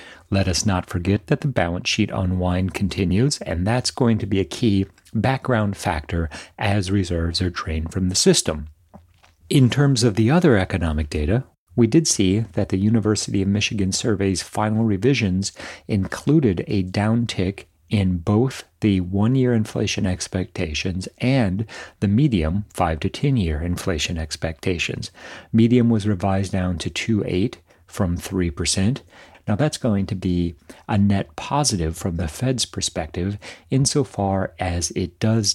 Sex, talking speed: male, 145 wpm